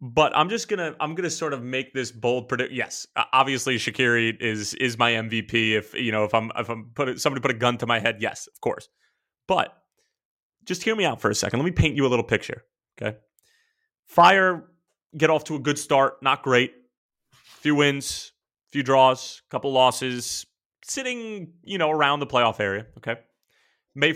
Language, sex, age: English, male, 30-49